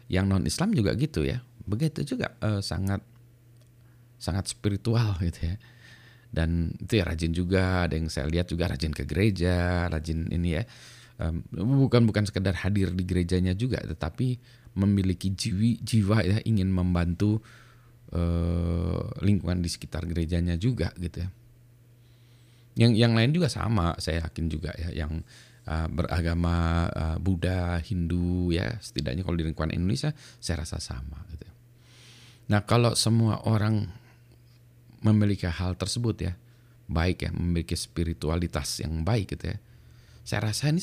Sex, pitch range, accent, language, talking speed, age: male, 85-115 Hz, native, Indonesian, 140 wpm, 30-49